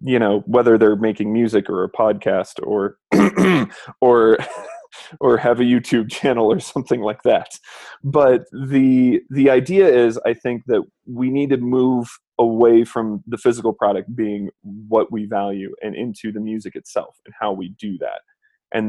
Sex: male